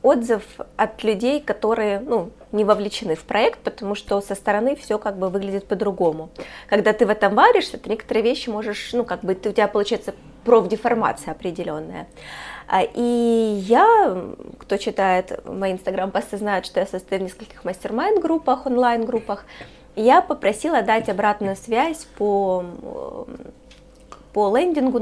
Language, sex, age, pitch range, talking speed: Russian, female, 20-39, 200-240 Hz, 135 wpm